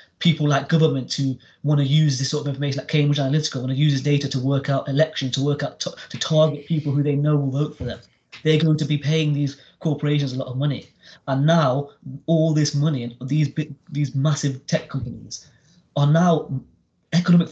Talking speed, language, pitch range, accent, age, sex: 215 wpm, English, 140-170 Hz, British, 20-39, male